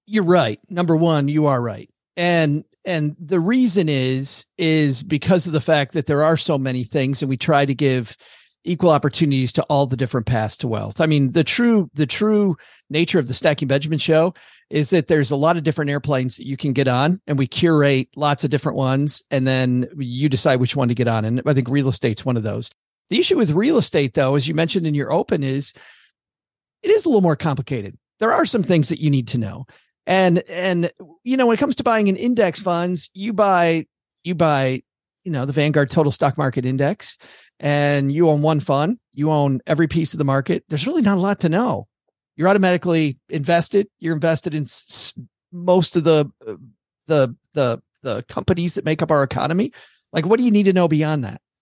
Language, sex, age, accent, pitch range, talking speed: English, male, 40-59, American, 140-175 Hz, 215 wpm